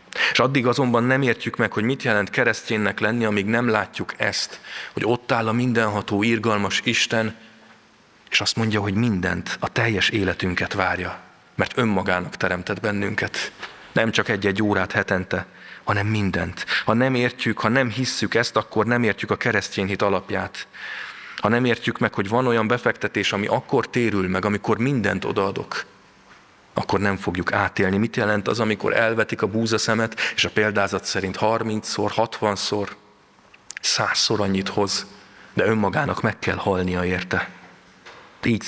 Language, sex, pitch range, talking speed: Hungarian, male, 100-115 Hz, 150 wpm